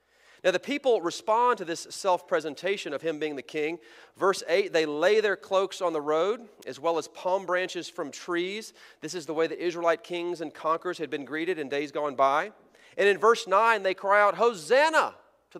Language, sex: English, male